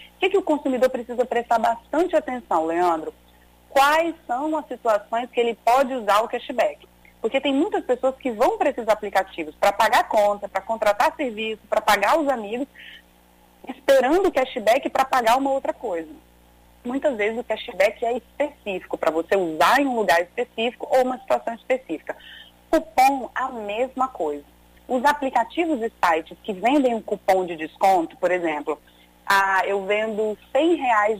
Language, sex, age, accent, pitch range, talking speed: Portuguese, female, 30-49, Brazilian, 200-265 Hz, 165 wpm